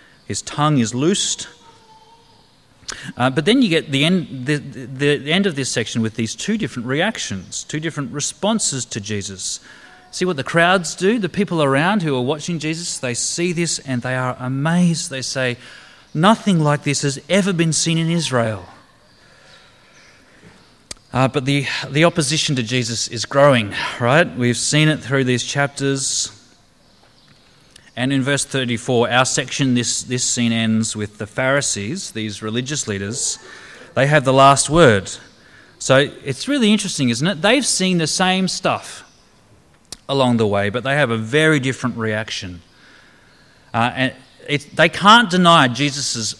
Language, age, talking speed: English, 30-49, 160 wpm